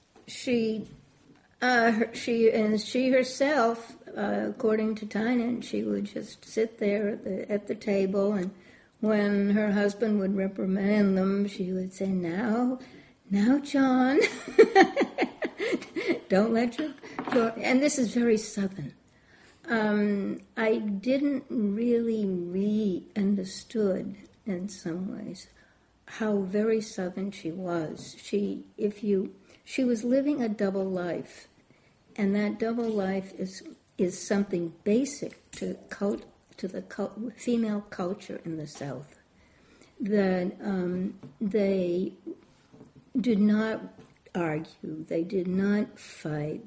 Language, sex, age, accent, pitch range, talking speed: English, female, 60-79, American, 185-225 Hz, 115 wpm